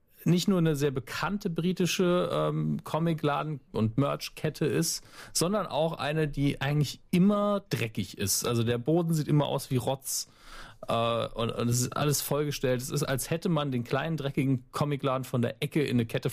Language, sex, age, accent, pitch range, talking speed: German, male, 40-59, German, 115-150 Hz, 180 wpm